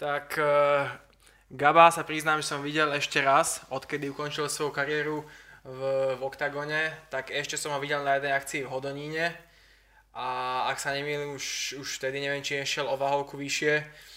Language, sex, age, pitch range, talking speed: Slovak, male, 20-39, 140-150 Hz, 170 wpm